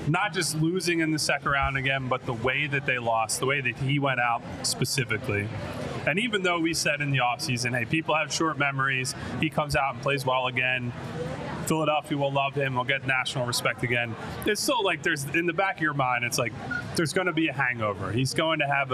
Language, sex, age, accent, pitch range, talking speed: English, male, 20-39, American, 130-160 Hz, 230 wpm